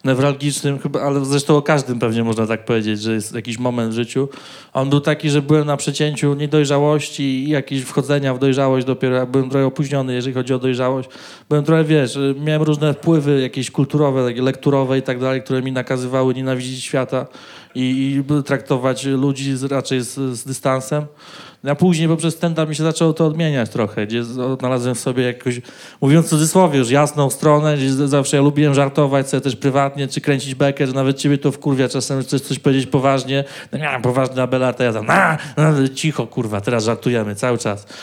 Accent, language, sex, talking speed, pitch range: native, Polish, male, 190 wpm, 130-150 Hz